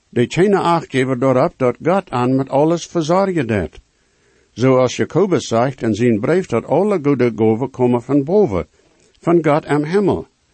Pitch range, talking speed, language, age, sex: 120-165 Hz, 165 wpm, English, 60-79, male